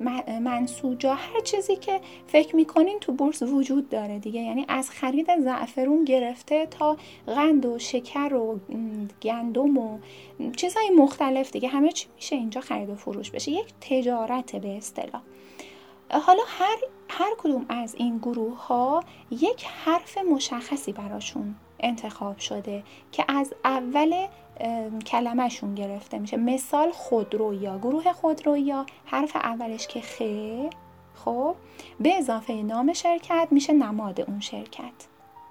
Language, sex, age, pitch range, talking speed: Persian, female, 10-29, 225-305 Hz, 125 wpm